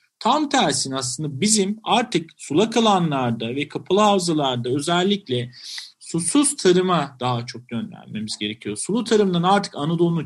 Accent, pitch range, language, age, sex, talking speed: native, 145-200 Hz, Turkish, 40-59, male, 125 wpm